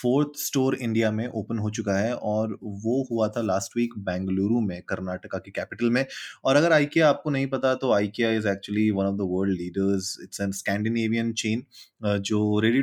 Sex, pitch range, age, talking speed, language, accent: male, 100-115 Hz, 20-39, 210 wpm, Hindi, native